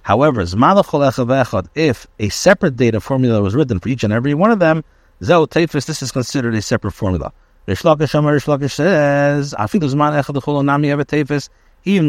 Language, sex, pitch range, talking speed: English, male, 115-145 Hz, 115 wpm